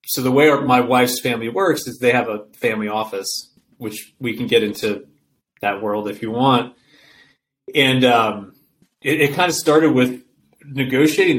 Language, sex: English, male